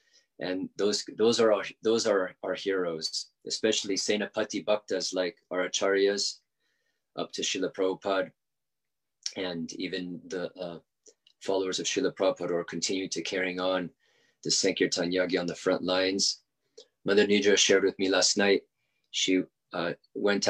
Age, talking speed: 30-49, 140 wpm